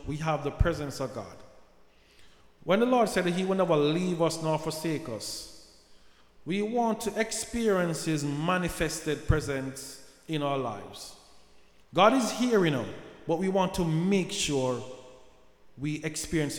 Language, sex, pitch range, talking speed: English, male, 140-195 Hz, 150 wpm